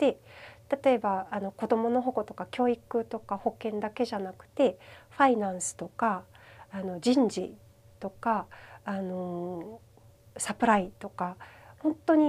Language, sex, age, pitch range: Japanese, female, 40-59, 190-240 Hz